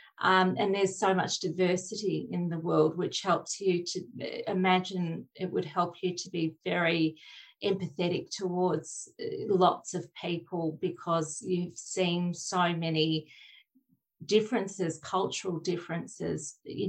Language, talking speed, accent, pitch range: English, 125 wpm, Australian, 170-200 Hz